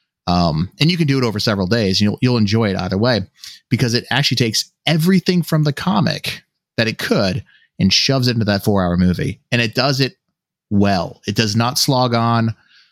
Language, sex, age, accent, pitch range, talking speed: English, male, 30-49, American, 105-135 Hz, 205 wpm